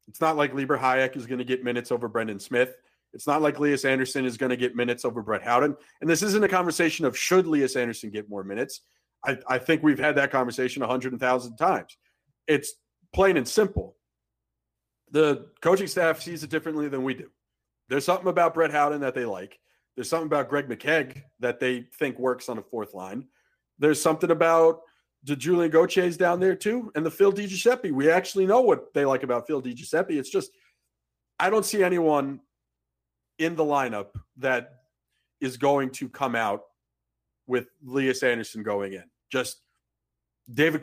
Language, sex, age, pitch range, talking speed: English, male, 40-59, 125-160 Hz, 185 wpm